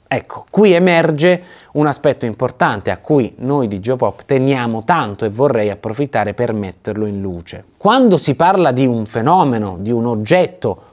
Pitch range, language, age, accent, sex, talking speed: 115-185 Hz, Italian, 30-49, native, male, 160 wpm